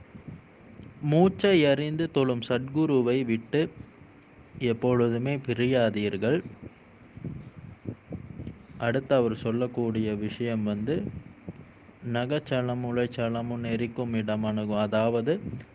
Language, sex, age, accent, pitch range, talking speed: Tamil, male, 20-39, native, 110-130 Hz, 65 wpm